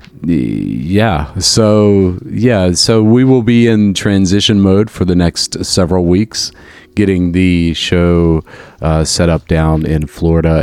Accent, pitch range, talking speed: American, 80-100 Hz, 135 wpm